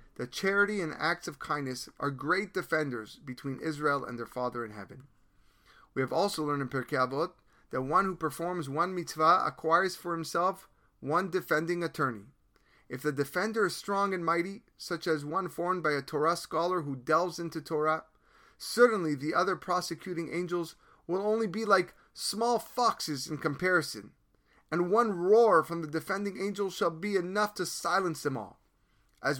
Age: 30-49